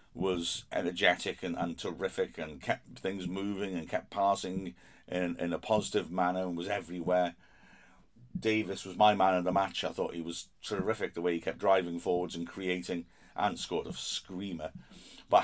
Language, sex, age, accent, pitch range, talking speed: English, male, 50-69, British, 90-110 Hz, 175 wpm